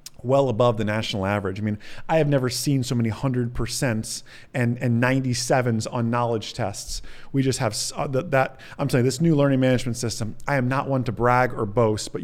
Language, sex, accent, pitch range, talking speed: English, male, American, 120-140 Hz, 205 wpm